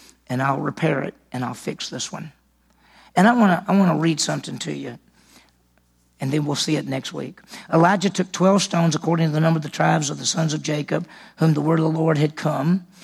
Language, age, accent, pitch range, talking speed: English, 50-69, American, 160-205 Hz, 235 wpm